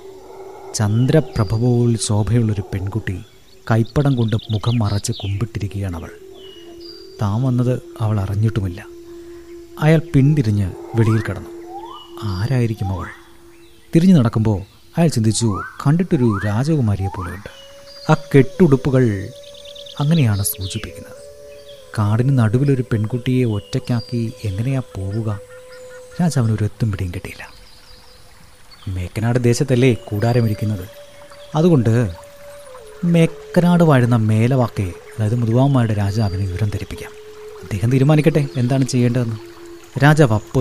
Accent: native